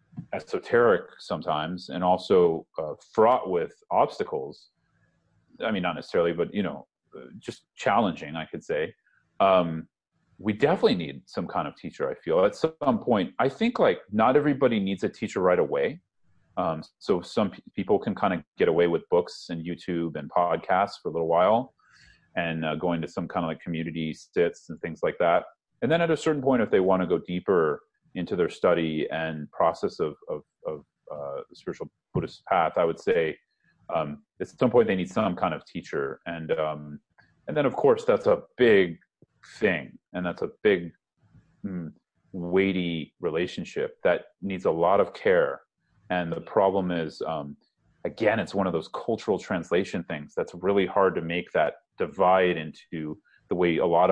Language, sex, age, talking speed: English, male, 30-49, 180 wpm